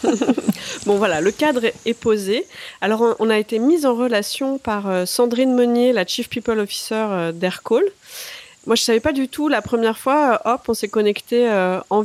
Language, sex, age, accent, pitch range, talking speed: French, female, 30-49, French, 200-245 Hz, 180 wpm